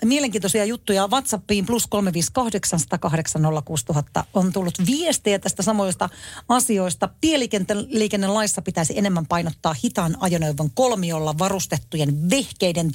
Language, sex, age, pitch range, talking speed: Finnish, female, 40-59, 165-225 Hz, 95 wpm